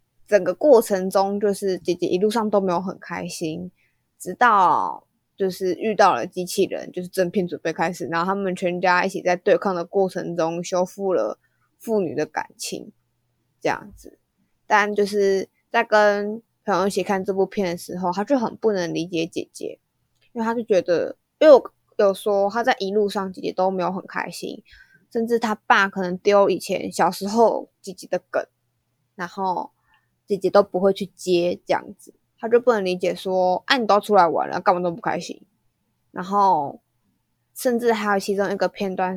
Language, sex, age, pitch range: Chinese, female, 20-39, 180-210 Hz